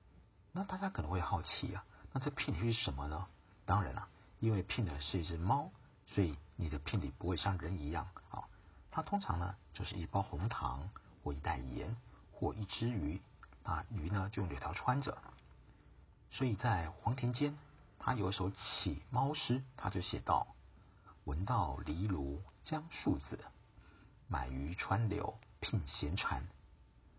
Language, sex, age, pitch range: Chinese, male, 50-69, 85-115 Hz